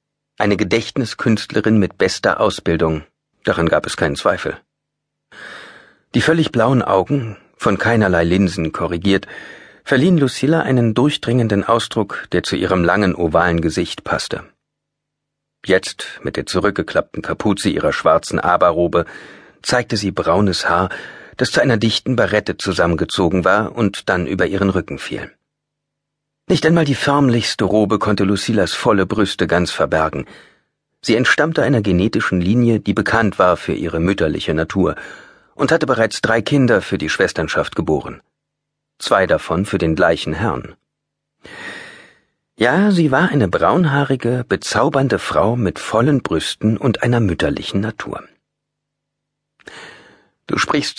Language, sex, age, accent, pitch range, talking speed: German, male, 40-59, German, 105-145 Hz, 130 wpm